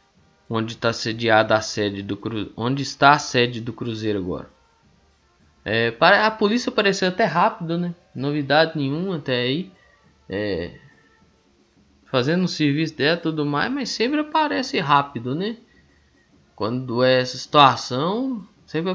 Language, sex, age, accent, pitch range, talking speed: Portuguese, male, 20-39, Brazilian, 115-180 Hz, 140 wpm